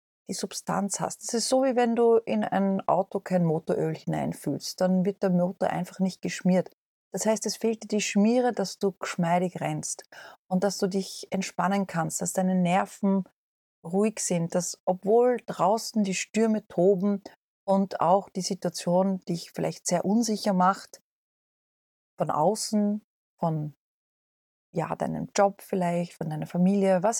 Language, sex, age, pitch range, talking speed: German, female, 40-59, 175-215 Hz, 155 wpm